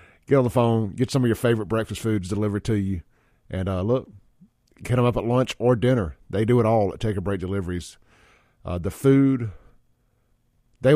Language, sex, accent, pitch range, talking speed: English, male, American, 100-125 Hz, 190 wpm